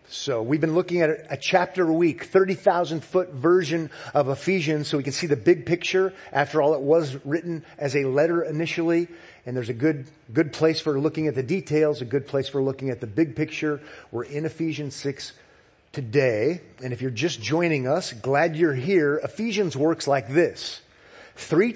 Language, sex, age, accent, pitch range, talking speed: English, male, 40-59, American, 140-175 Hz, 190 wpm